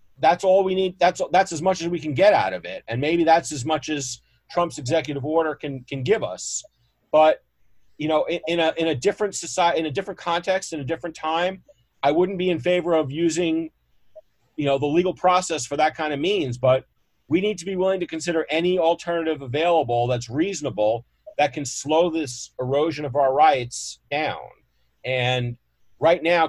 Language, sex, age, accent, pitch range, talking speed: English, male, 40-59, American, 135-175 Hz, 200 wpm